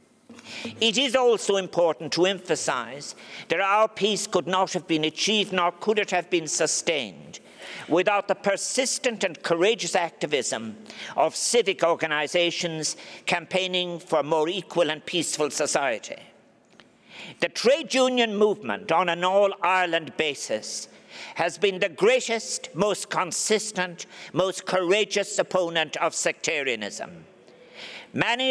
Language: English